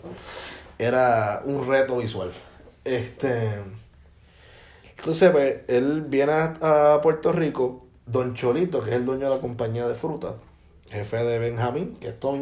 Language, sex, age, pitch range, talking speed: Spanish, male, 20-39, 95-135 Hz, 145 wpm